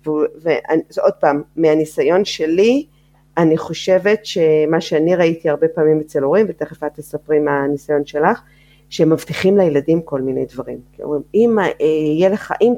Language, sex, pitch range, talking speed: Hebrew, female, 155-200 Hz, 130 wpm